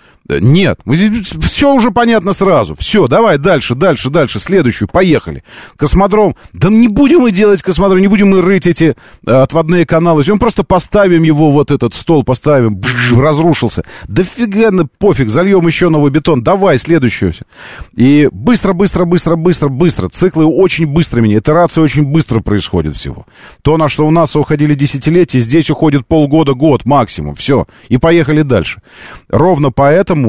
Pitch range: 95-165 Hz